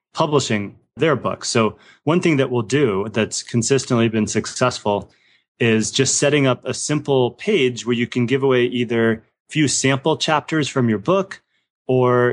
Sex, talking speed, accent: male, 165 wpm, American